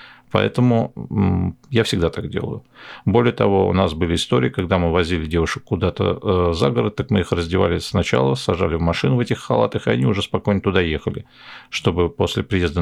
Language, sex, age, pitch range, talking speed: Russian, male, 50-69, 90-110 Hz, 180 wpm